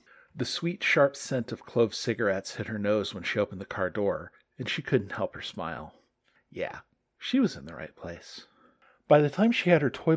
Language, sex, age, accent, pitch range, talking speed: English, male, 40-59, American, 105-160 Hz, 210 wpm